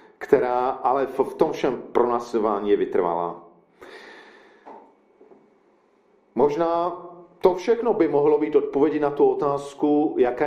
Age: 40-59